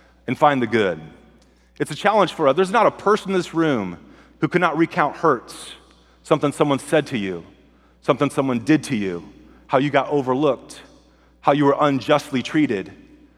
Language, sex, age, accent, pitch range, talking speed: English, male, 40-59, American, 115-155 Hz, 180 wpm